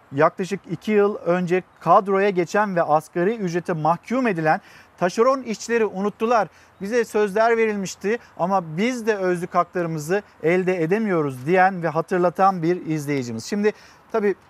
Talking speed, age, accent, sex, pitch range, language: 130 wpm, 50-69, native, male, 180-225 Hz, Turkish